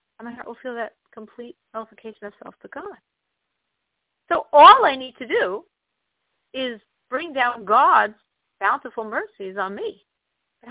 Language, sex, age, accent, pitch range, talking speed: English, female, 50-69, American, 210-290 Hz, 150 wpm